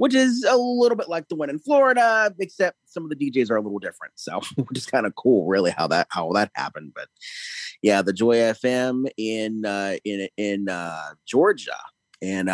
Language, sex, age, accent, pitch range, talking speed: English, male, 30-49, American, 105-140 Hz, 205 wpm